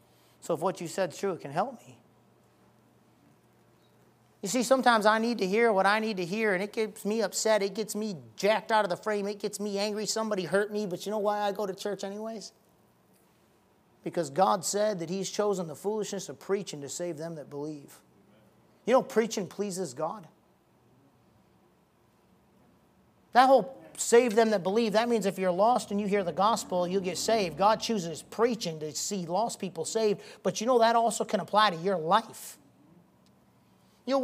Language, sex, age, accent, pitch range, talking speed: English, male, 40-59, American, 190-225 Hz, 195 wpm